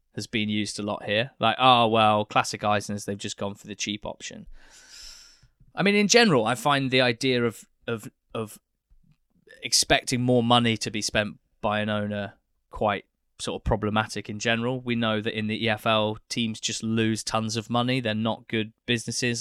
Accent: British